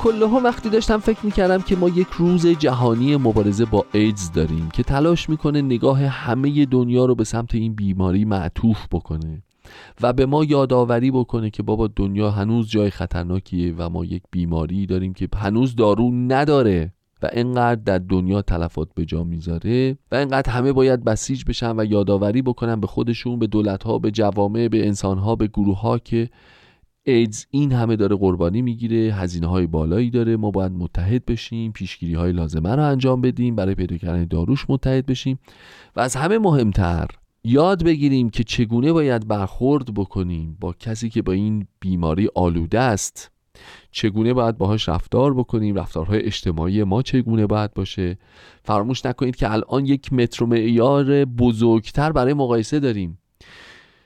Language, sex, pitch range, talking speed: Persian, male, 95-130 Hz, 155 wpm